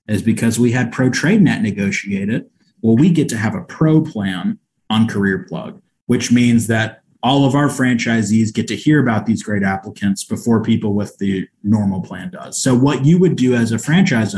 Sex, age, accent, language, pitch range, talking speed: male, 30-49, American, English, 105-135 Hz, 195 wpm